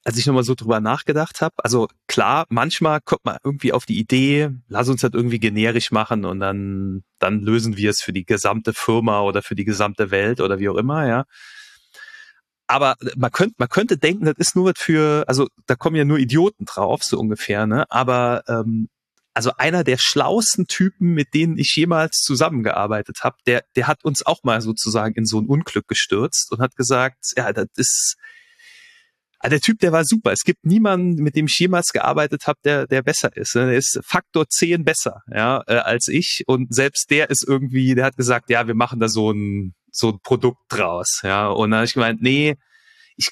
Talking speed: 205 wpm